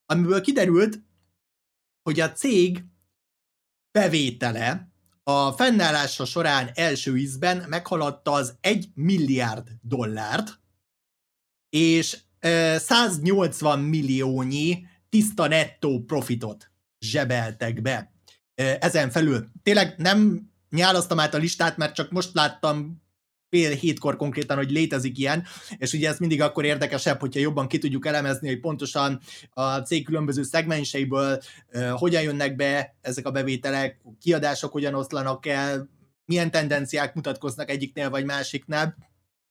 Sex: male